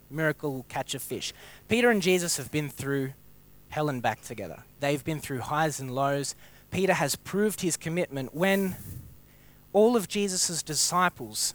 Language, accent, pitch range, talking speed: English, Australian, 130-160 Hz, 155 wpm